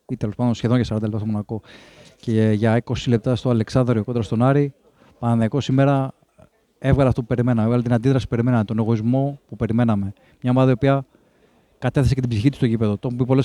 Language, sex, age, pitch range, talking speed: Greek, male, 20-39, 115-135 Hz, 220 wpm